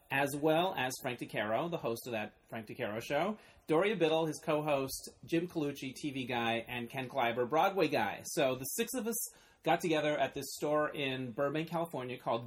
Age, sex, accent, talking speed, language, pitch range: 30-49, male, American, 190 wpm, English, 125-160 Hz